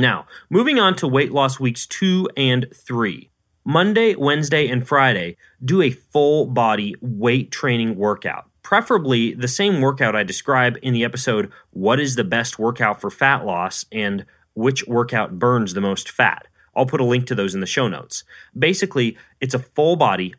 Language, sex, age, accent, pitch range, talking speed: English, male, 30-49, American, 115-150 Hz, 170 wpm